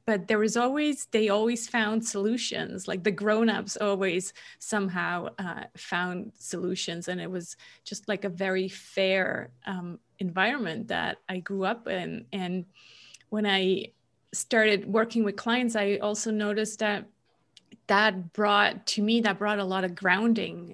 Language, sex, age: English, female, 30-49